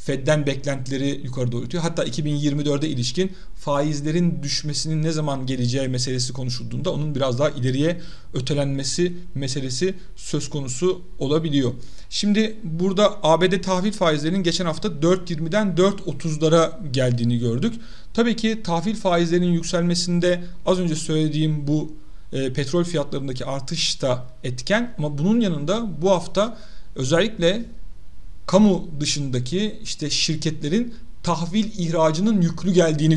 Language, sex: Turkish, male